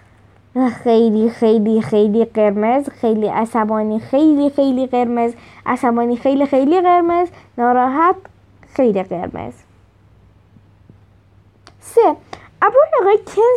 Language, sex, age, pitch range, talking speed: Persian, female, 20-39, 225-375 Hz, 85 wpm